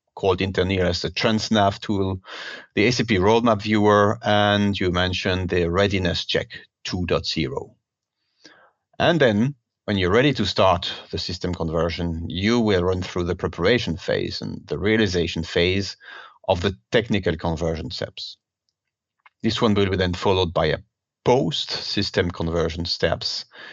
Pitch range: 90-110 Hz